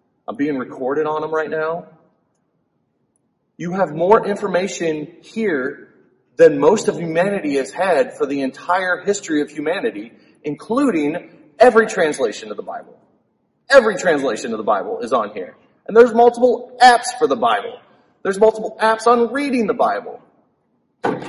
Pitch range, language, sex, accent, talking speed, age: 160-240 Hz, English, male, American, 145 wpm, 30-49